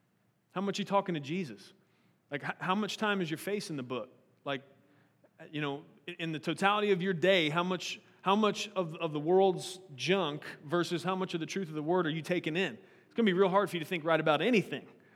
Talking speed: 240 wpm